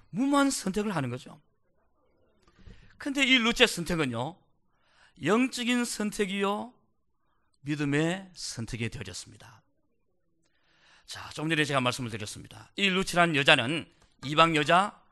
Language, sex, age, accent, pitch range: Korean, male, 40-59, native, 175-245 Hz